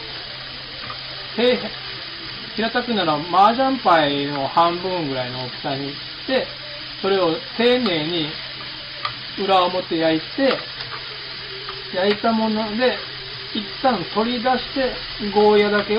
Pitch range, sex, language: 145-205 Hz, male, Japanese